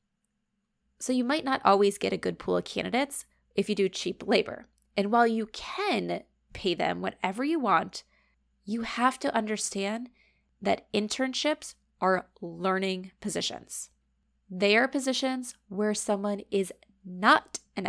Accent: American